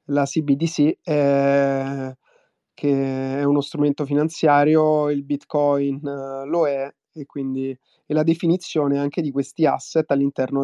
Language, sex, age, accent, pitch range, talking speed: Italian, male, 30-49, native, 135-155 Hz, 125 wpm